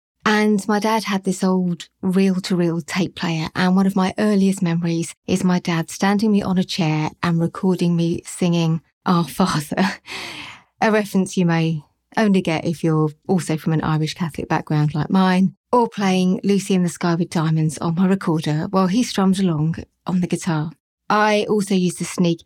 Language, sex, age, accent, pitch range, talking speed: English, female, 30-49, British, 165-195 Hz, 180 wpm